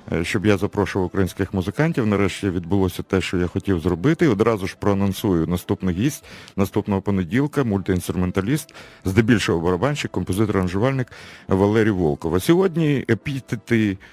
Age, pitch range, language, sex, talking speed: 50-69, 90-115 Hz, Russian, male, 120 wpm